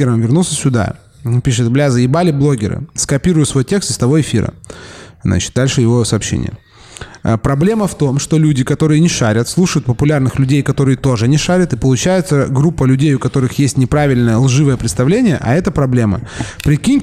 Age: 20-39